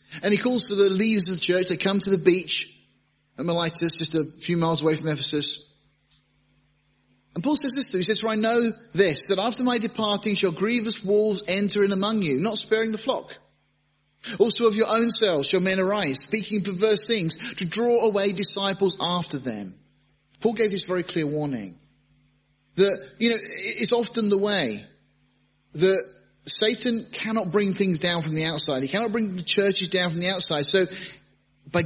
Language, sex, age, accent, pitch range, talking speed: English, male, 30-49, British, 145-200 Hz, 190 wpm